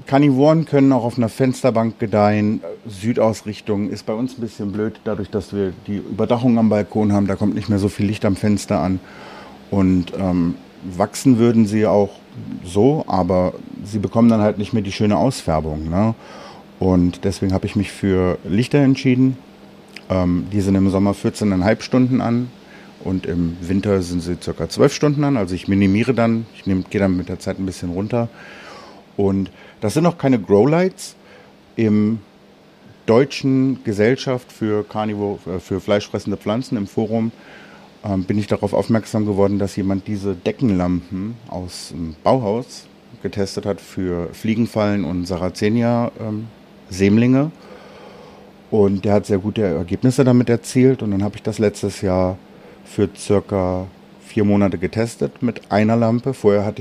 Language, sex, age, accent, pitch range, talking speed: German, male, 50-69, German, 95-115 Hz, 155 wpm